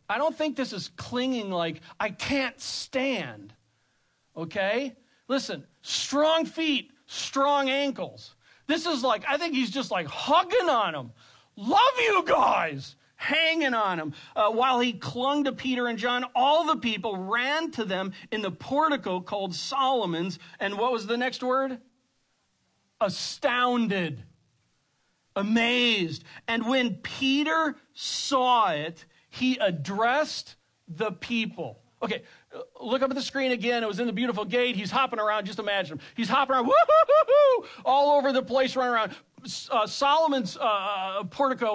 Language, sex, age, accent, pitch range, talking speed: English, male, 40-59, American, 200-275 Hz, 145 wpm